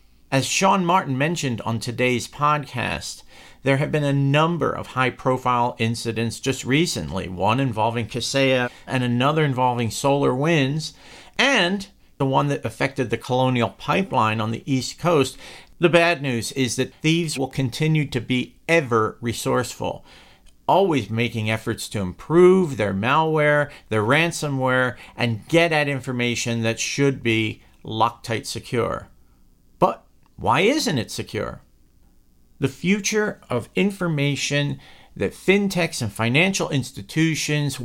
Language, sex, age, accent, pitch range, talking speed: English, male, 50-69, American, 115-150 Hz, 125 wpm